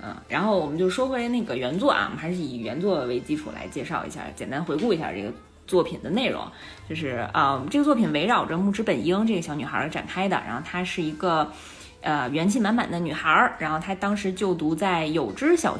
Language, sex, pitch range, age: Chinese, female, 160-220 Hz, 20-39